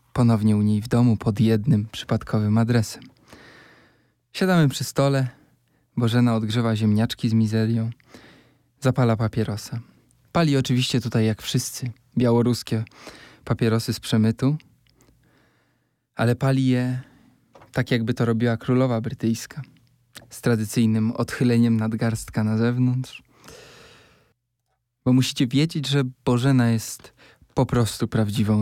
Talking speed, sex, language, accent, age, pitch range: 110 wpm, male, Polish, native, 20-39, 110-125 Hz